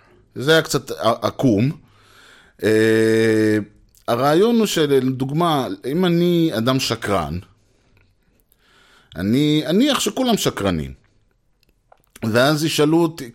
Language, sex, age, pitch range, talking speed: Hebrew, male, 30-49, 110-175 Hz, 85 wpm